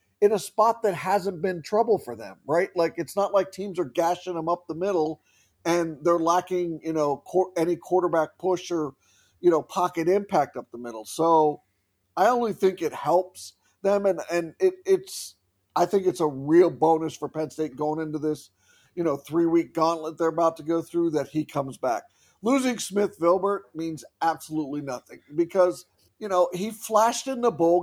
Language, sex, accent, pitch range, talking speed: English, male, American, 155-195 Hz, 185 wpm